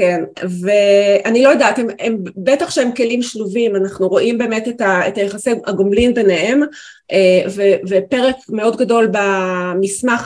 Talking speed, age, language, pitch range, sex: 135 wpm, 40-59, Hebrew, 195-240 Hz, female